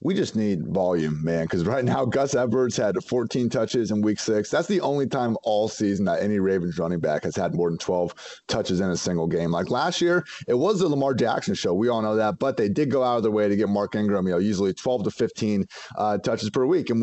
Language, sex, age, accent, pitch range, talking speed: English, male, 30-49, American, 100-120 Hz, 255 wpm